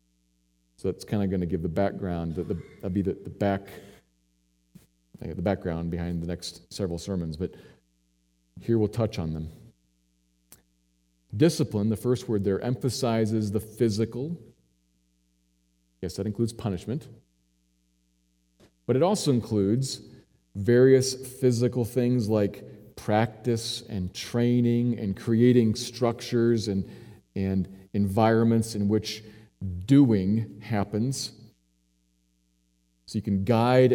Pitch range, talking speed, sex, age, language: 80-120 Hz, 115 wpm, male, 40-59, English